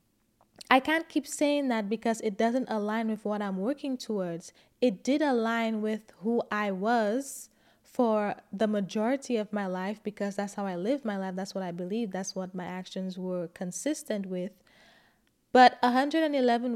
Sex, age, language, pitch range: female, 20-39, English, 200-250 Hz